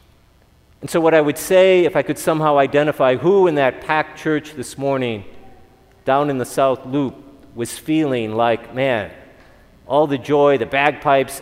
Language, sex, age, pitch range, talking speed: English, male, 40-59, 115-145 Hz, 170 wpm